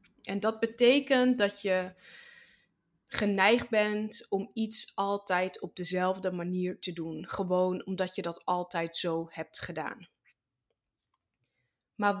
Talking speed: 120 wpm